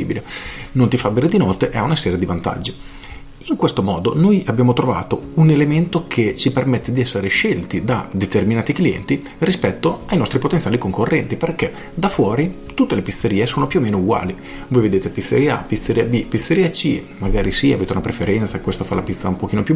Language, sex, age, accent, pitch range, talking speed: Italian, male, 40-59, native, 95-135 Hz, 195 wpm